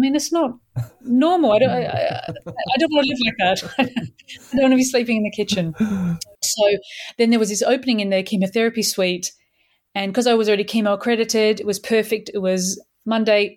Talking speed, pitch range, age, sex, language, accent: 210 wpm, 190-230 Hz, 30-49, female, English, Australian